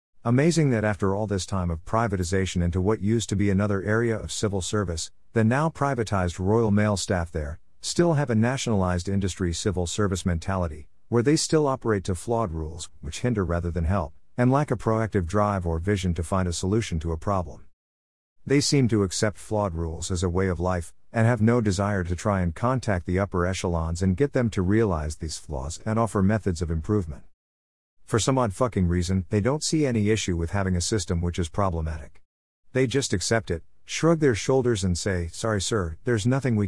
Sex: male